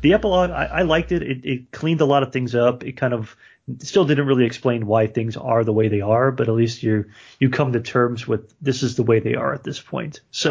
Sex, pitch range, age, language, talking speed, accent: male, 110-135 Hz, 30-49, English, 270 wpm, American